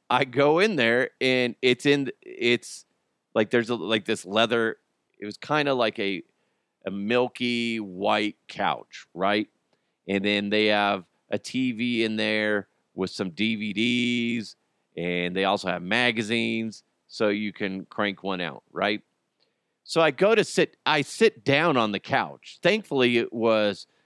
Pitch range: 105-140 Hz